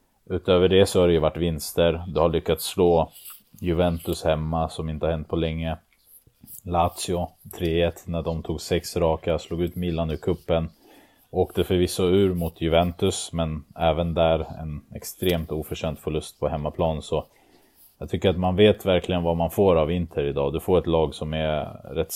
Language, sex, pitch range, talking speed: Swedish, male, 80-90 Hz, 175 wpm